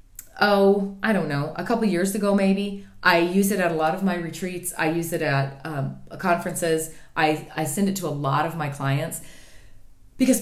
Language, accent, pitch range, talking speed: English, American, 145-200 Hz, 200 wpm